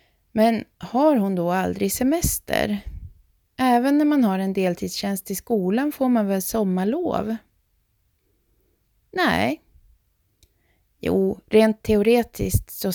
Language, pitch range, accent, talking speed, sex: Swedish, 185-235 Hz, native, 105 wpm, female